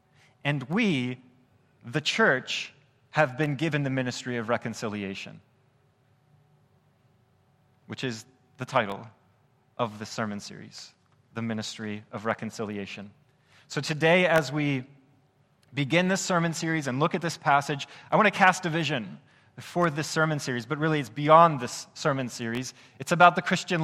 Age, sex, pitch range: 30-49, male, 125-160 Hz